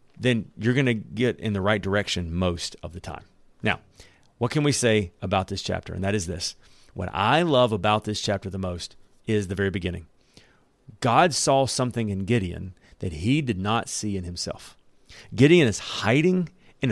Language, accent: English, American